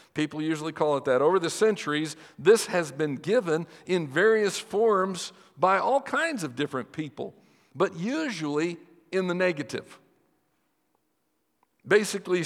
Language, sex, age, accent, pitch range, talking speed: English, male, 60-79, American, 180-255 Hz, 130 wpm